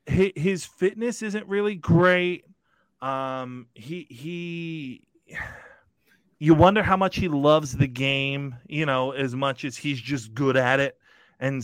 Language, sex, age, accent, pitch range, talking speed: English, male, 30-49, American, 125-165 Hz, 140 wpm